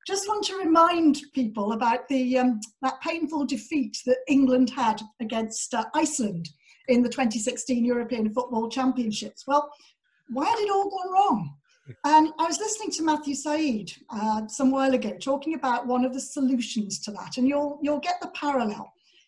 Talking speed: 170 wpm